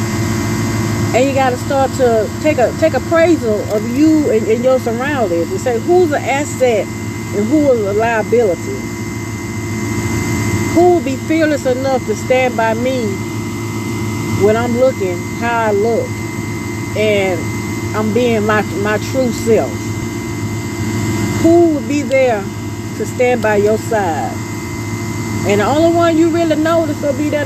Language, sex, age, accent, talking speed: English, female, 40-59, American, 145 wpm